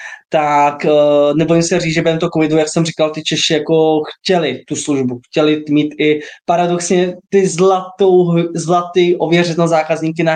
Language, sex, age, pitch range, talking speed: Czech, male, 20-39, 150-165 Hz, 160 wpm